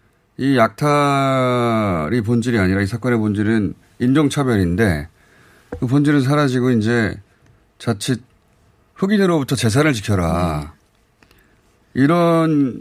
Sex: male